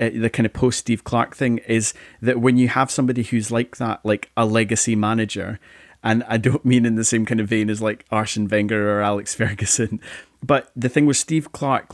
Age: 30-49